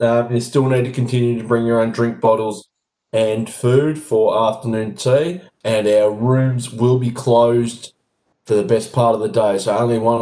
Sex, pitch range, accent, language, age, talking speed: male, 105-125 Hz, Australian, English, 20-39, 195 wpm